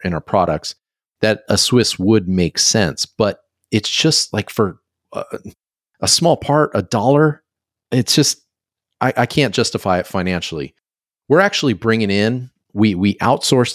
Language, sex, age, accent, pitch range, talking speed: English, male, 30-49, American, 90-120 Hz, 155 wpm